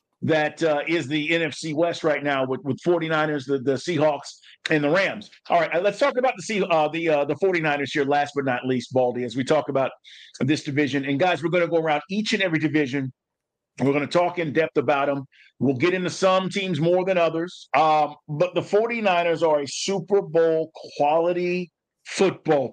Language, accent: English, American